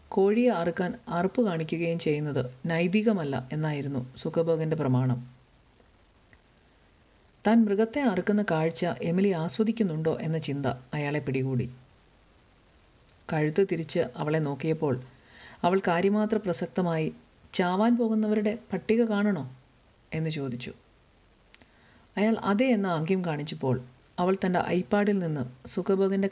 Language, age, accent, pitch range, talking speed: Malayalam, 50-69, native, 135-195 Hz, 95 wpm